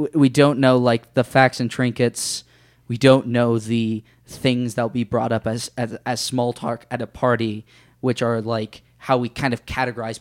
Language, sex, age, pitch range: English, male, 20-39, 120-130 Hz